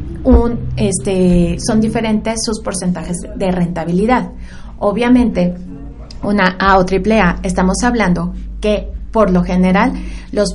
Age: 30-49